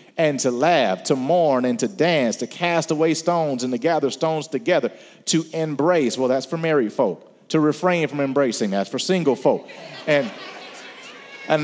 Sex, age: male, 40-59